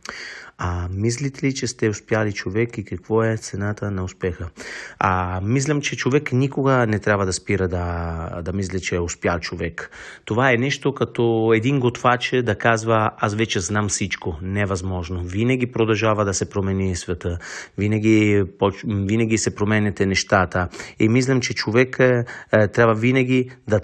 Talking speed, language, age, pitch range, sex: 155 wpm, Bulgarian, 30-49, 100-130 Hz, male